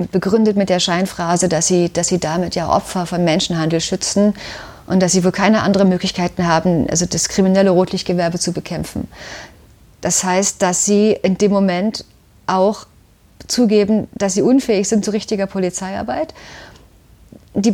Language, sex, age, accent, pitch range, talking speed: German, female, 30-49, German, 180-210 Hz, 150 wpm